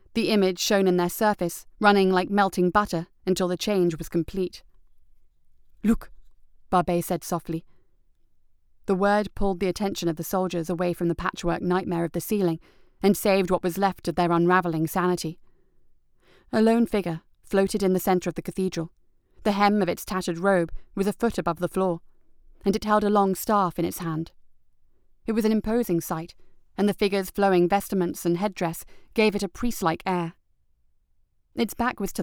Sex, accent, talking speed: female, British, 180 wpm